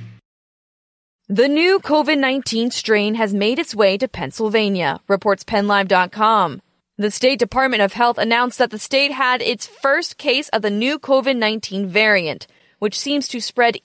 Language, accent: English, American